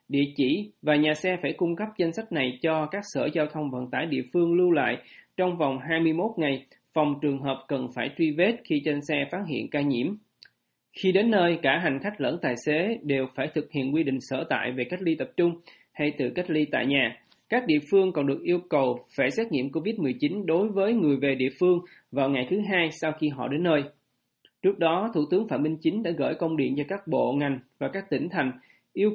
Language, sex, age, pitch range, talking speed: Vietnamese, male, 20-39, 140-180 Hz, 235 wpm